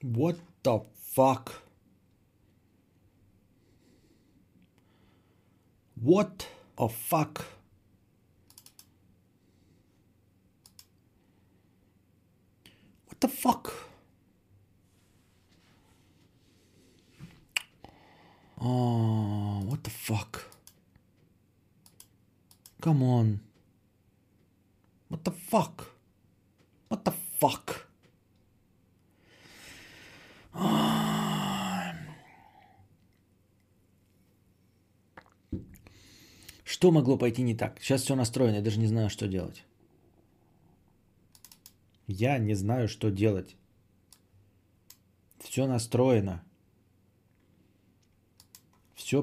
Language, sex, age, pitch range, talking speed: Bulgarian, male, 50-69, 95-110 Hz, 50 wpm